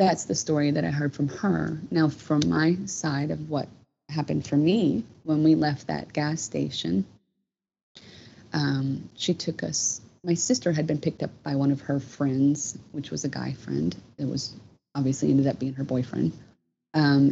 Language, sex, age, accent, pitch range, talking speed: English, female, 30-49, American, 135-155 Hz, 180 wpm